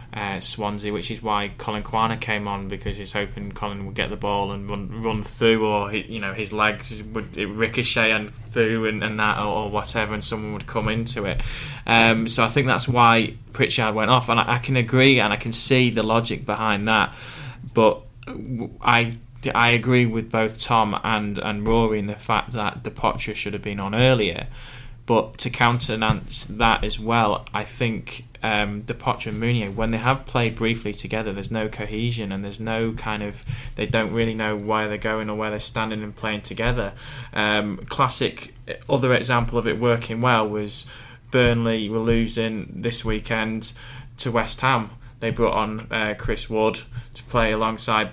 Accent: British